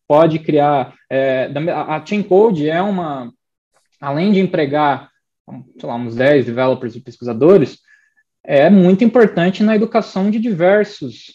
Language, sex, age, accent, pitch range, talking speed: Portuguese, male, 20-39, Brazilian, 135-170 Hz, 130 wpm